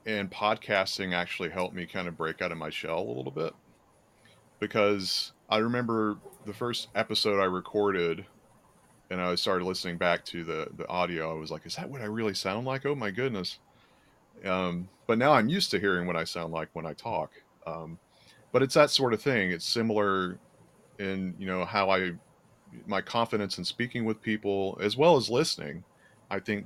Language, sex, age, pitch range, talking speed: English, male, 30-49, 85-105 Hz, 190 wpm